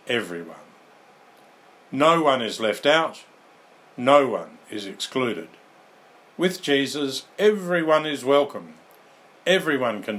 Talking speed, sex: 100 wpm, male